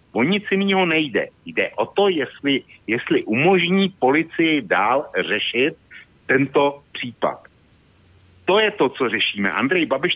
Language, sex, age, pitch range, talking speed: Slovak, male, 60-79, 115-190 Hz, 130 wpm